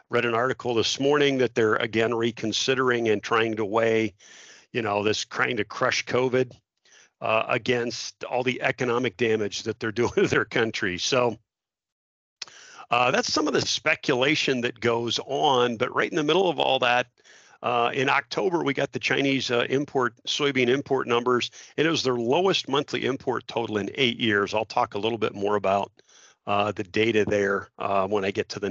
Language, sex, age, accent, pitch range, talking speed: English, male, 50-69, American, 110-130 Hz, 190 wpm